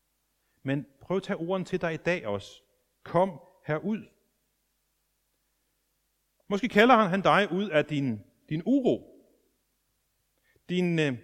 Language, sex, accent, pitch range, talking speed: Danish, male, native, 125-185 Hz, 115 wpm